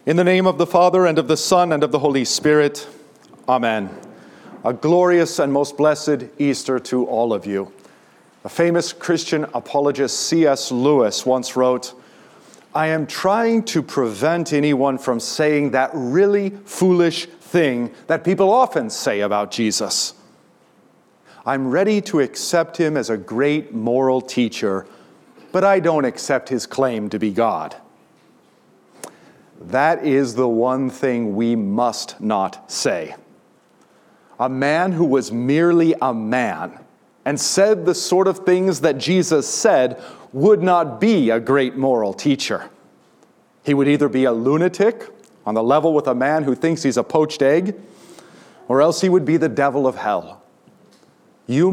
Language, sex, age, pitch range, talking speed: English, male, 40-59, 130-170 Hz, 150 wpm